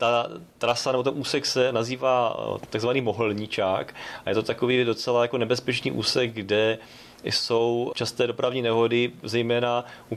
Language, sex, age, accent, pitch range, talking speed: Czech, male, 30-49, native, 115-135 Hz, 140 wpm